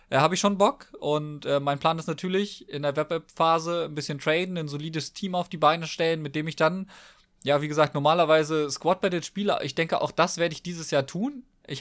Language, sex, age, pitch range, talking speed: German, male, 20-39, 135-170 Hz, 230 wpm